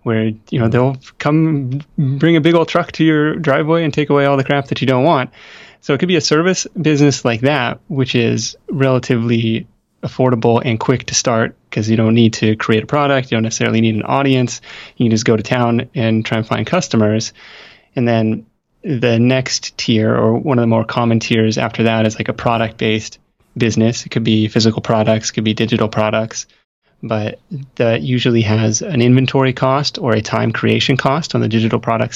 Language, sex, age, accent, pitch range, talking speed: English, male, 20-39, American, 110-135 Hz, 205 wpm